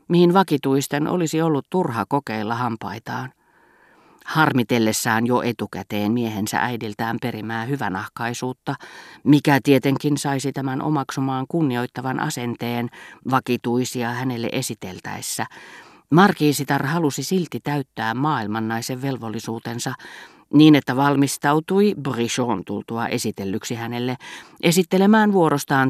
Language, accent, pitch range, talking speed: Finnish, native, 115-150 Hz, 90 wpm